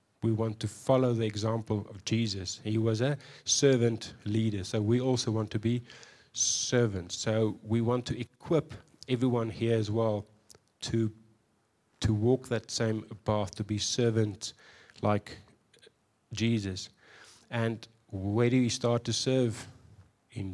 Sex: male